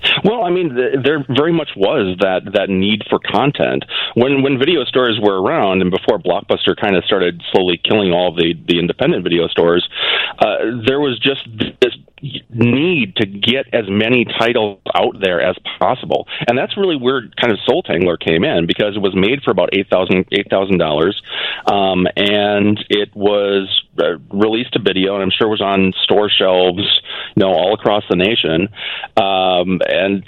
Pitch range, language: 90-110 Hz, English